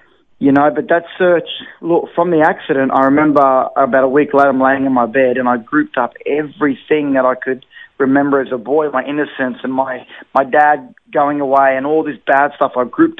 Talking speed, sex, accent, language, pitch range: 220 wpm, male, Australian, English, 135-165 Hz